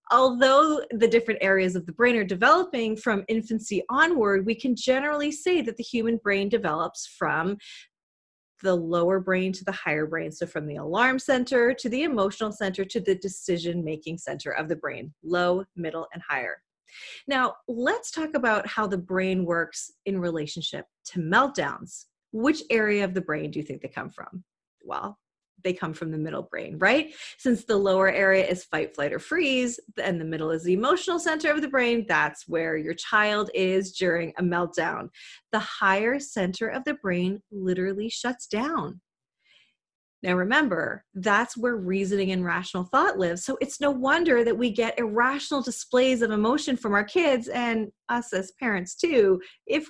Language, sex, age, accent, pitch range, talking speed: English, female, 30-49, American, 185-260 Hz, 175 wpm